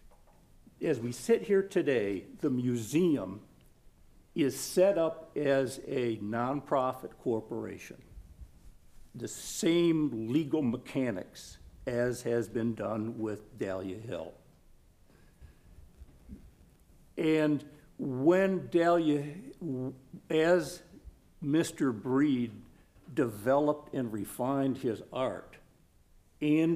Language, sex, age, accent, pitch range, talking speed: English, male, 60-79, American, 120-160 Hz, 85 wpm